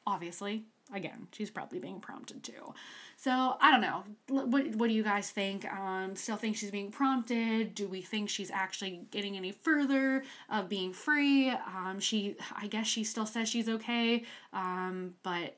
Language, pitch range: English, 190-235 Hz